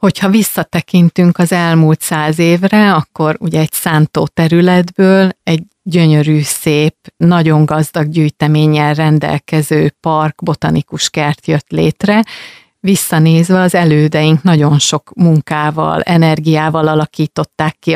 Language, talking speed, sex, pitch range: Hungarian, 105 wpm, female, 155-180 Hz